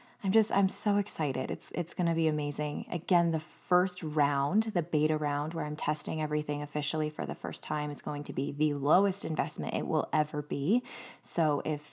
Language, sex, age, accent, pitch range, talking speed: English, female, 20-39, American, 150-175 Hz, 200 wpm